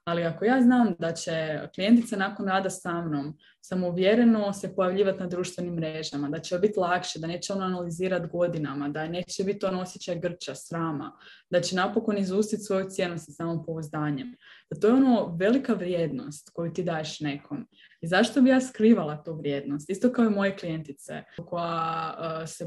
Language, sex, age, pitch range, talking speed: Croatian, female, 20-39, 165-205 Hz, 175 wpm